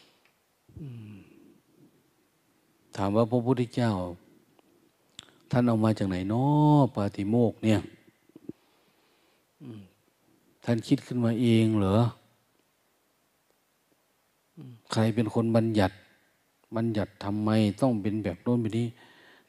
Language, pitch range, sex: Thai, 100-120 Hz, male